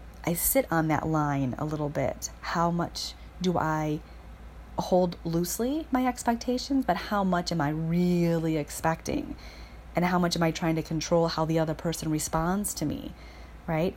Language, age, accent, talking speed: English, 30-49, American, 170 wpm